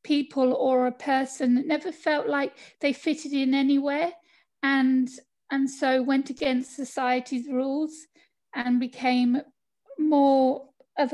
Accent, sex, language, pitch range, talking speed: British, female, English, 245-310 Hz, 125 wpm